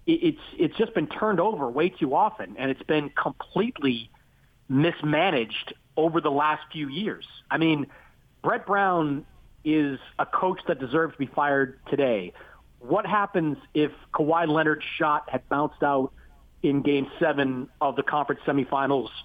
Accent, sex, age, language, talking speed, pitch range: American, male, 40-59, English, 150 wpm, 135-185 Hz